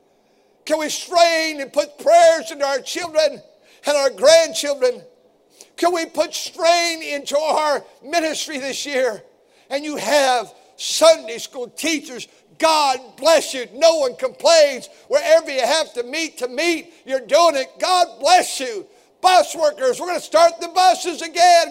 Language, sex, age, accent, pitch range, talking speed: English, male, 50-69, American, 270-350 Hz, 150 wpm